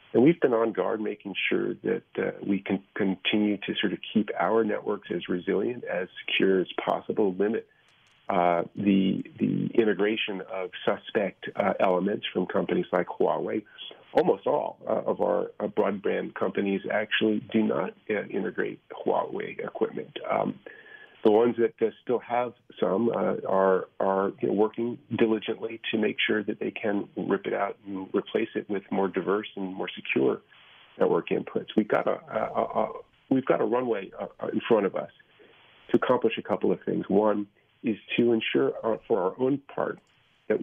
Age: 40-59